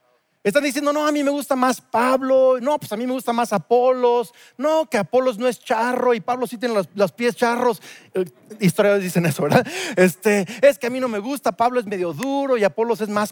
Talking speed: 225 wpm